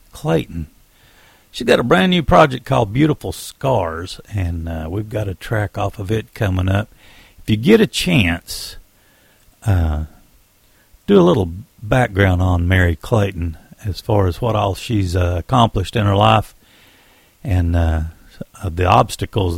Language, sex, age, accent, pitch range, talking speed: English, male, 60-79, American, 90-120 Hz, 155 wpm